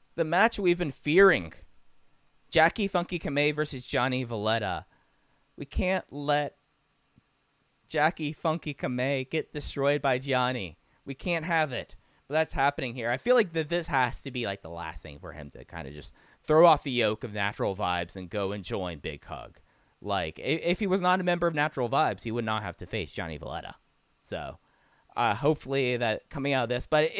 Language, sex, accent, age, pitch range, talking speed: English, male, American, 20-39, 100-150 Hz, 195 wpm